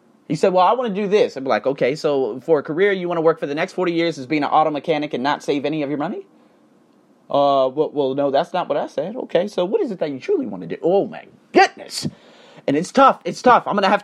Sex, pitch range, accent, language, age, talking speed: male, 150-215 Hz, American, English, 30-49, 290 wpm